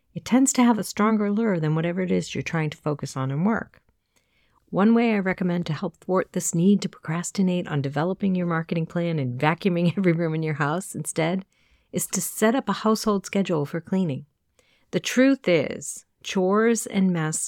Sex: female